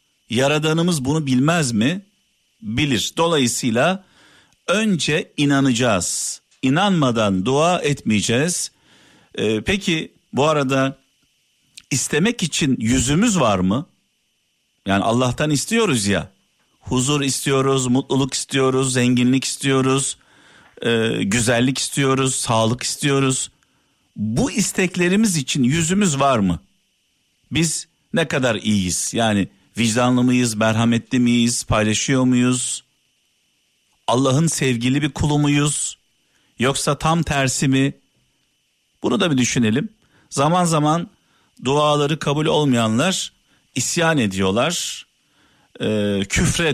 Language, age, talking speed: Turkish, 50-69, 95 wpm